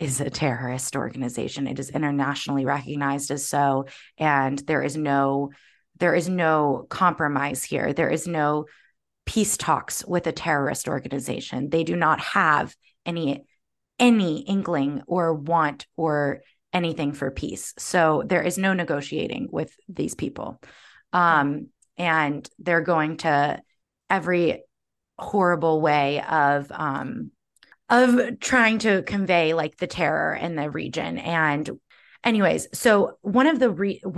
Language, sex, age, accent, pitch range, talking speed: English, female, 20-39, American, 145-185 Hz, 135 wpm